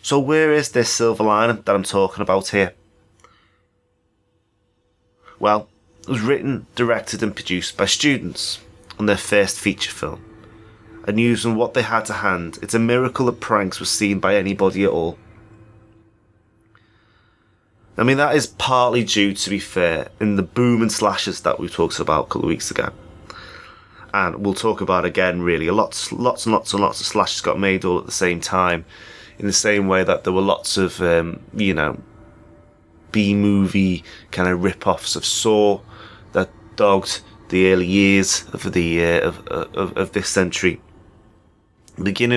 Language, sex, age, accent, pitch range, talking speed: English, male, 30-49, British, 90-110 Hz, 170 wpm